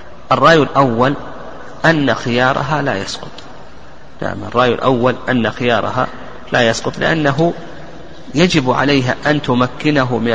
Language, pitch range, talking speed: Arabic, 120-145 Hz, 105 wpm